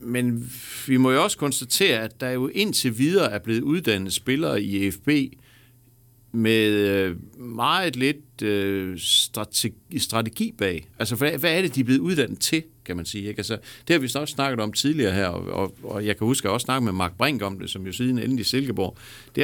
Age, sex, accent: 60-79, male, native